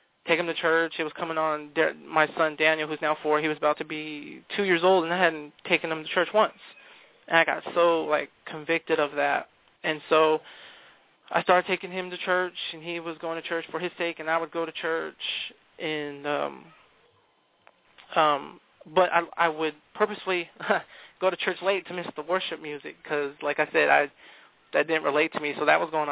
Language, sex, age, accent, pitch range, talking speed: English, male, 20-39, American, 150-170 Hz, 210 wpm